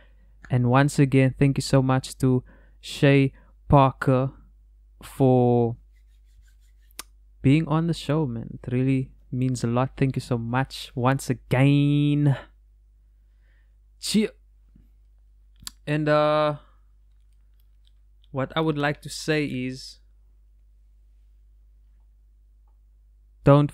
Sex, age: male, 20-39